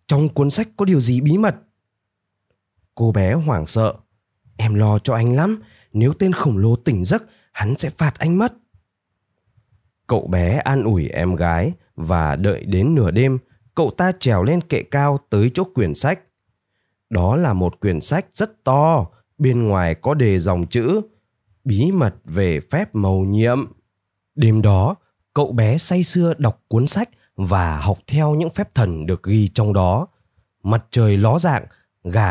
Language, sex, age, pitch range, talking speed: Vietnamese, male, 20-39, 100-145 Hz, 170 wpm